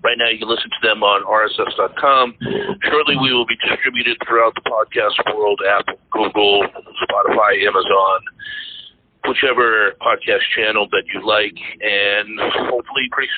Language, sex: English, male